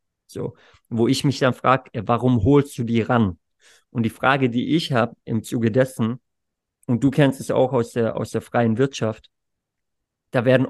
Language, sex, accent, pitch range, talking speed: German, male, German, 115-130 Hz, 185 wpm